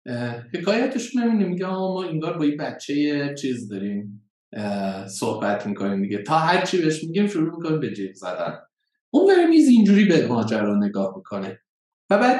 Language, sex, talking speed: Persian, male, 165 wpm